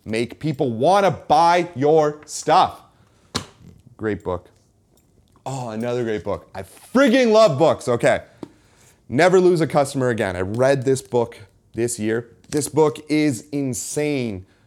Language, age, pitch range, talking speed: English, 30-49, 105-135 Hz, 135 wpm